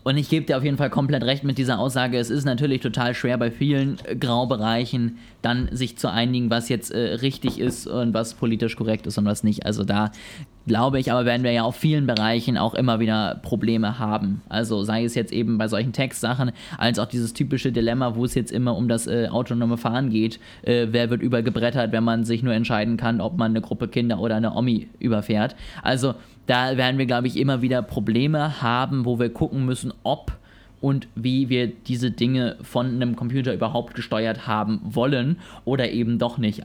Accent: German